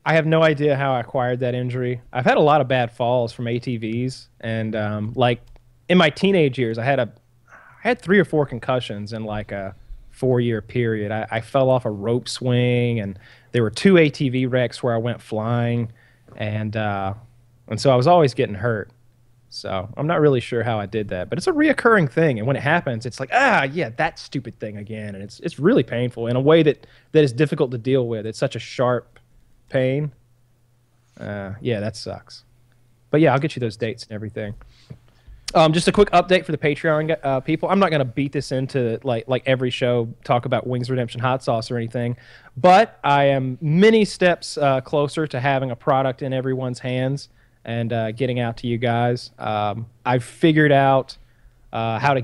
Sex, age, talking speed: male, 20-39, 210 wpm